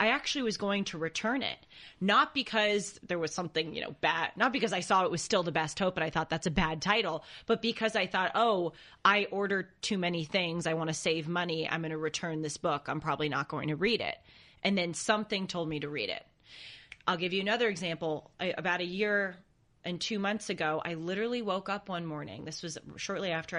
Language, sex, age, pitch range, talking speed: English, female, 30-49, 160-205 Hz, 230 wpm